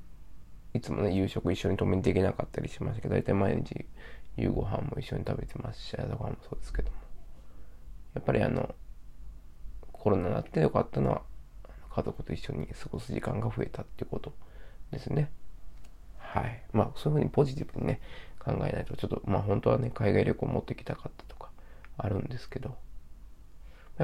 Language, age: Japanese, 20-39